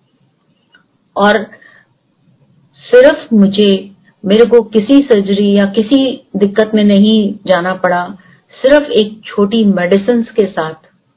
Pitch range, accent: 185-225 Hz, native